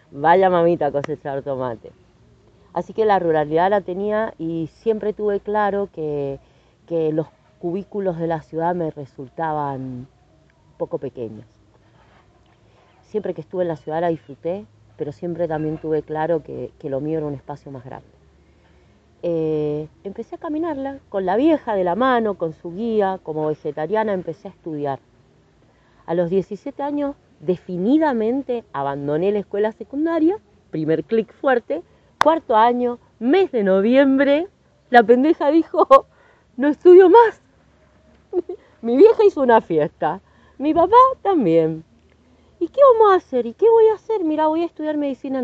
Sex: female